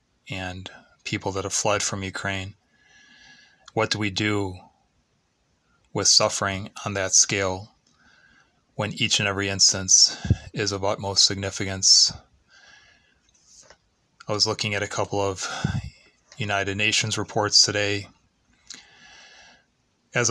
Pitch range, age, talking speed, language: 95-110 Hz, 20-39, 110 wpm, English